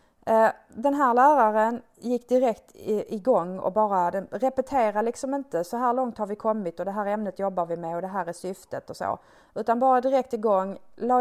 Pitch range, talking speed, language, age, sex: 190-250 Hz, 185 wpm, Swedish, 30-49, female